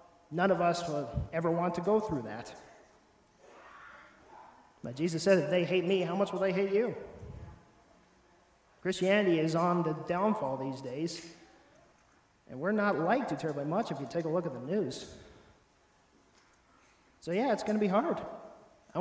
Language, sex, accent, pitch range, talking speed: English, male, American, 160-205 Hz, 165 wpm